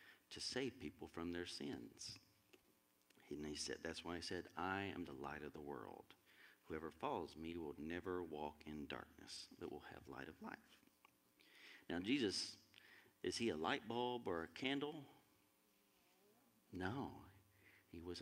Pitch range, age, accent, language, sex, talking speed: 75-95 Hz, 40-59, American, English, male, 155 wpm